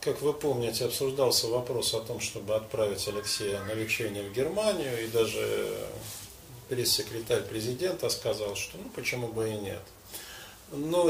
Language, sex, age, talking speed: Russian, male, 40-59, 140 wpm